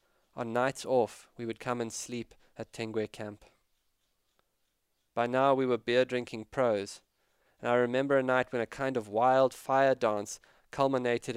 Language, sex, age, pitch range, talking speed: English, male, 20-39, 110-125 Hz, 160 wpm